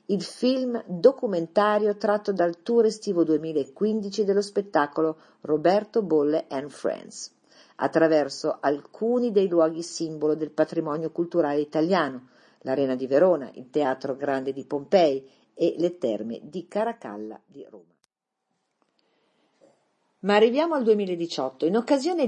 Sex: female